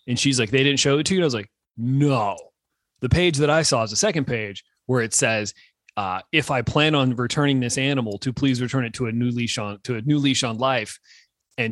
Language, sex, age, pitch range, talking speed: English, male, 30-49, 115-140 Hz, 255 wpm